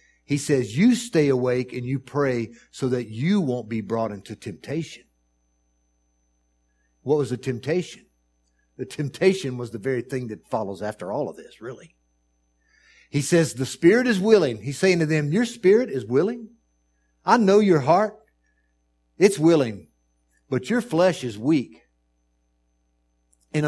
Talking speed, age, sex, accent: 150 wpm, 60-79, male, American